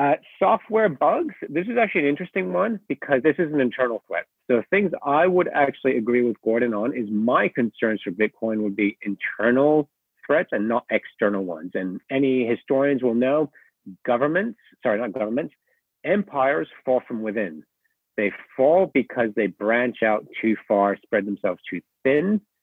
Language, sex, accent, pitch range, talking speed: English, male, American, 105-145 Hz, 165 wpm